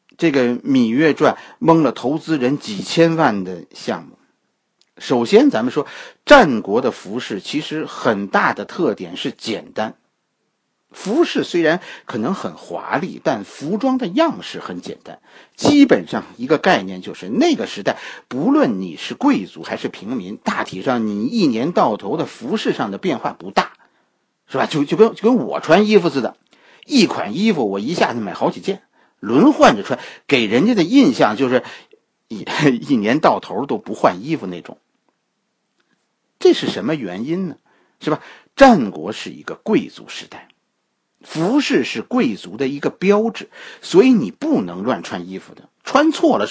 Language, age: Chinese, 50-69